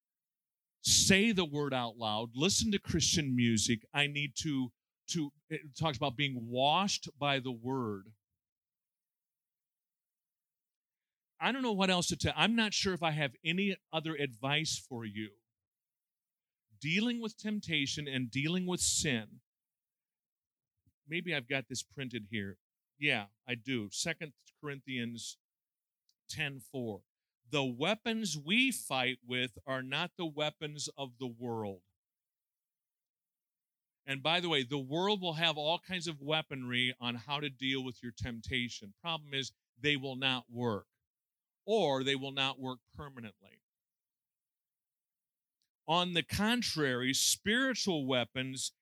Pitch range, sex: 125-165 Hz, male